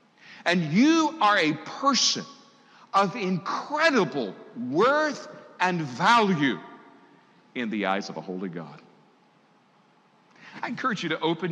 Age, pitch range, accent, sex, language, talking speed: 50-69, 145-210 Hz, American, male, English, 115 wpm